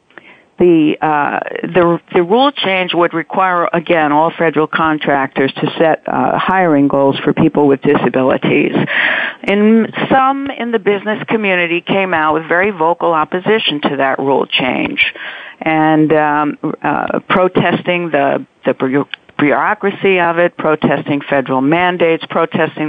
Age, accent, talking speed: 60-79, American, 130 wpm